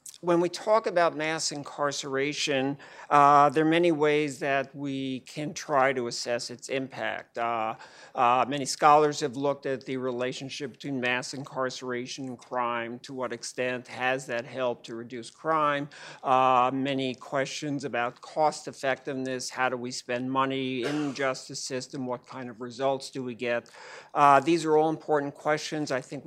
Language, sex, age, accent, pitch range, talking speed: English, male, 50-69, American, 125-145 Hz, 165 wpm